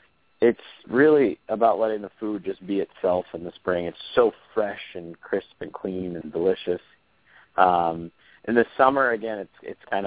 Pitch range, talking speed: 90-105 Hz, 175 wpm